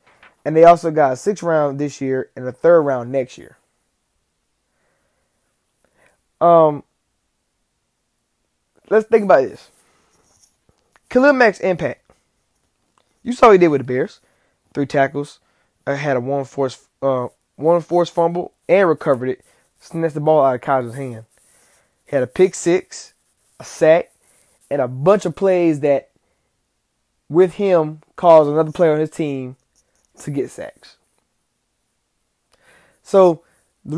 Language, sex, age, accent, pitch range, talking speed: English, male, 20-39, American, 135-180 Hz, 135 wpm